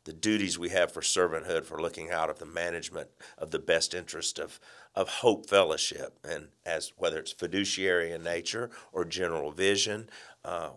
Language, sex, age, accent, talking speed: English, male, 50-69, American, 175 wpm